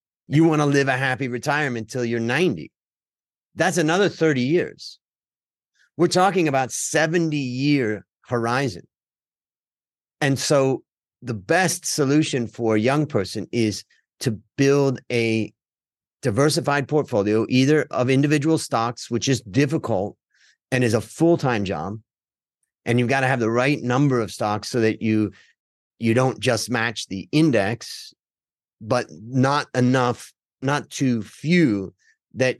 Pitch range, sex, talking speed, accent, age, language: 115-145 Hz, male, 130 wpm, American, 40-59, English